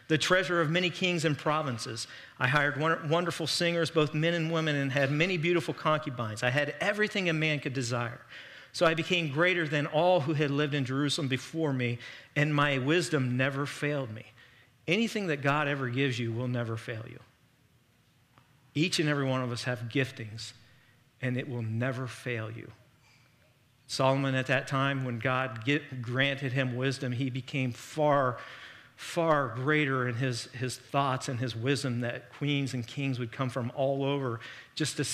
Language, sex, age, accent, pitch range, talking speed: English, male, 50-69, American, 125-150 Hz, 175 wpm